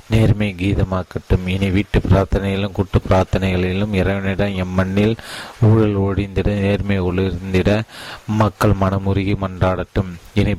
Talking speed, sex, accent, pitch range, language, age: 95 wpm, male, native, 90-100 Hz, Tamil, 30-49